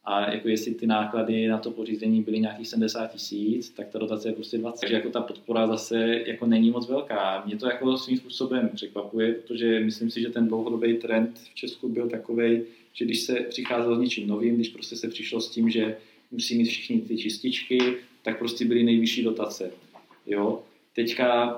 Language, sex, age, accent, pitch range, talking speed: Czech, male, 20-39, native, 105-115 Hz, 195 wpm